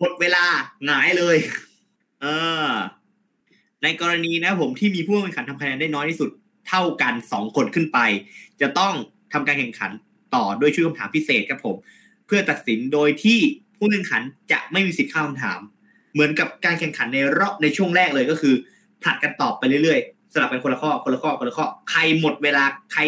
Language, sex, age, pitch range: Thai, male, 20-39, 150-210 Hz